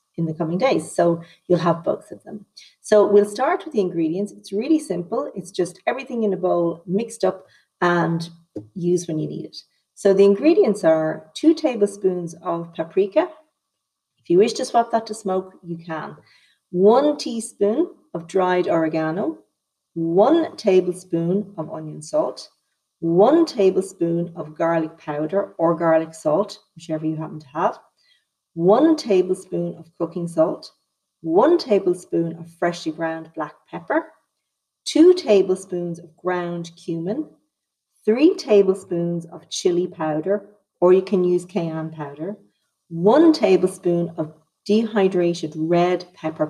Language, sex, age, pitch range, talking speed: English, female, 40-59, 165-205 Hz, 140 wpm